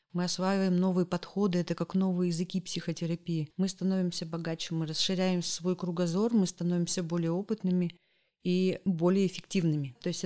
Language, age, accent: Russian, 30-49, native